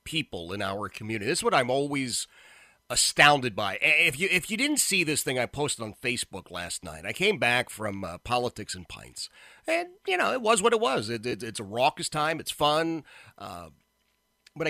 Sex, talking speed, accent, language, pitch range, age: male, 205 wpm, American, English, 115-170 Hz, 30-49